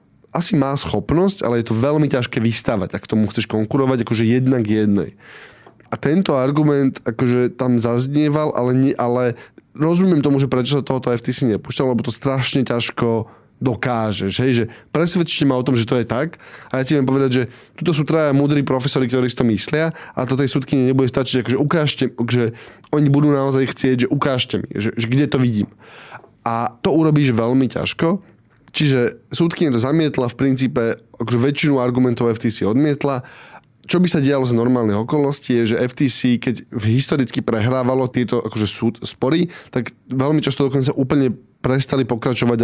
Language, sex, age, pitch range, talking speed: Slovak, male, 10-29, 115-140 Hz, 175 wpm